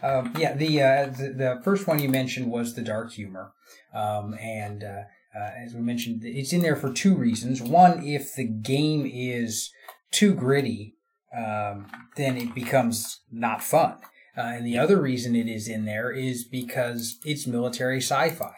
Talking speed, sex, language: 175 wpm, male, English